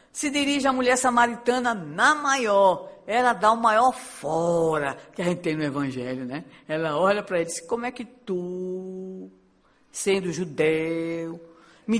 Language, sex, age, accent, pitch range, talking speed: Portuguese, female, 60-79, Brazilian, 160-245 Hz, 160 wpm